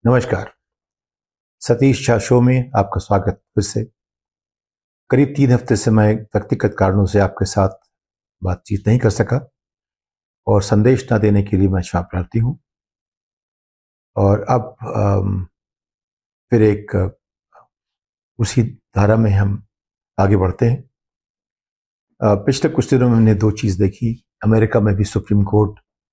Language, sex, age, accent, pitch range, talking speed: Hindi, male, 50-69, native, 100-115 Hz, 125 wpm